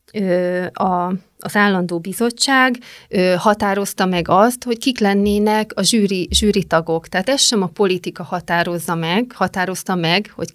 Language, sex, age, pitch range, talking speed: Hungarian, female, 30-49, 175-220 Hz, 125 wpm